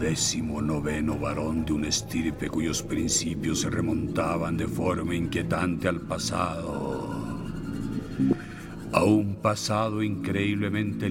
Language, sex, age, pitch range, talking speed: Spanish, male, 60-79, 90-110 Hz, 105 wpm